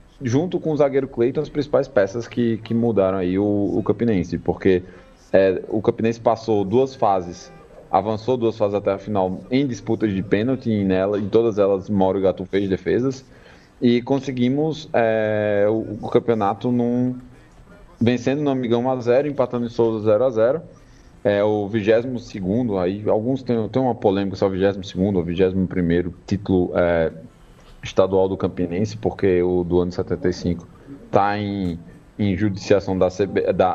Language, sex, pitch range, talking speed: Portuguese, male, 95-120 Hz, 160 wpm